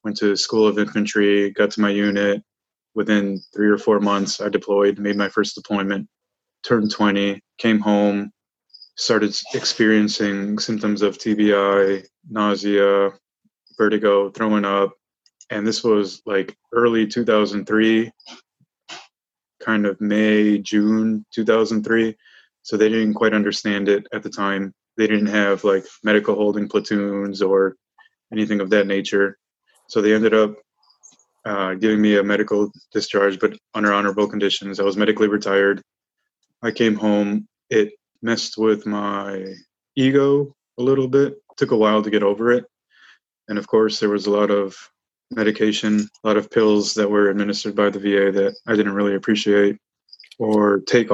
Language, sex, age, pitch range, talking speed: English, male, 20-39, 100-110 Hz, 150 wpm